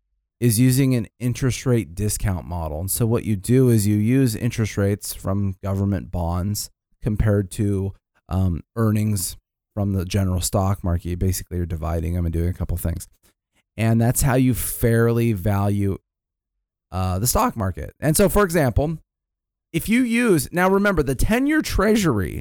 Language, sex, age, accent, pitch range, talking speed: English, male, 30-49, American, 95-130 Hz, 165 wpm